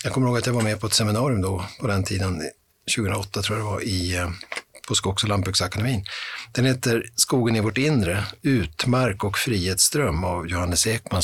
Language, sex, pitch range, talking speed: Swedish, male, 95-120 Hz, 190 wpm